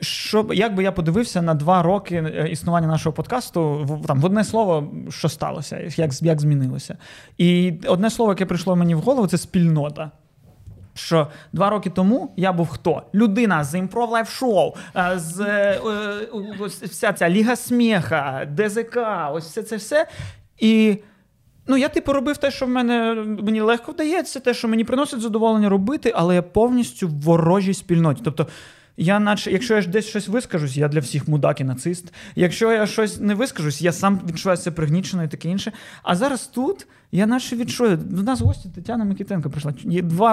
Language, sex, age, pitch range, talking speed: Ukrainian, male, 20-39, 165-225 Hz, 175 wpm